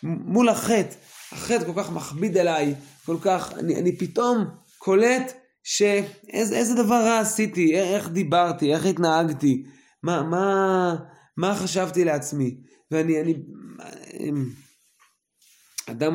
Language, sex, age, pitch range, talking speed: Hebrew, male, 20-39, 145-200 Hz, 110 wpm